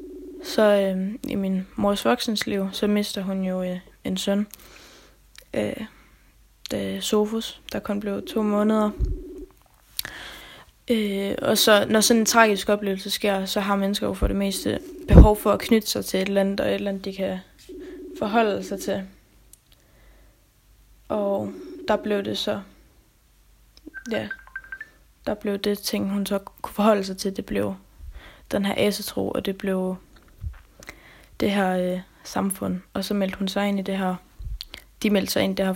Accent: native